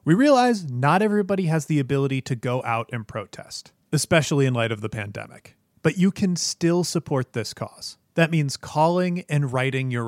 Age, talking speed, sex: 30-49, 185 wpm, male